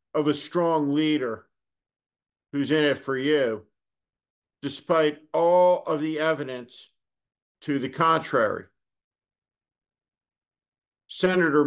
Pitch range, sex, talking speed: 120-160 Hz, male, 95 wpm